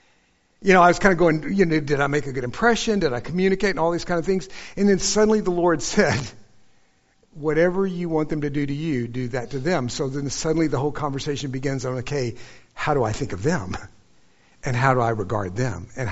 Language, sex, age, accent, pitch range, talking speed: English, male, 60-79, American, 130-180 Hz, 240 wpm